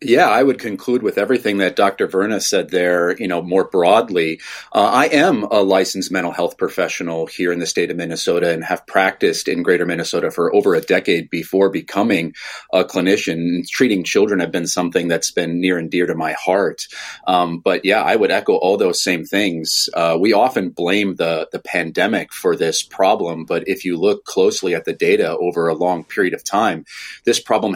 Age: 30-49